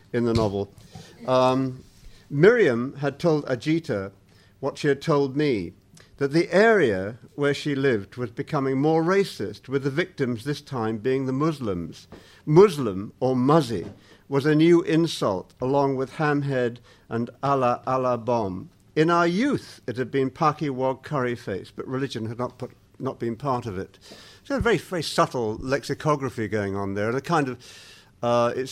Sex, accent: male, British